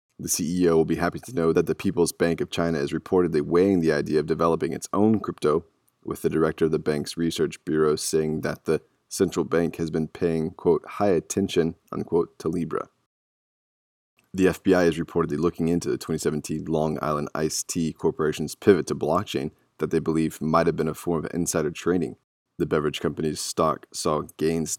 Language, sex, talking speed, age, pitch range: English, male, 190 wpm, 20-39, 80-85 Hz